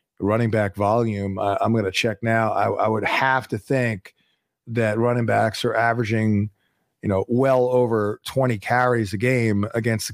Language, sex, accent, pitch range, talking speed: English, male, American, 115-150 Hz, 180 wpm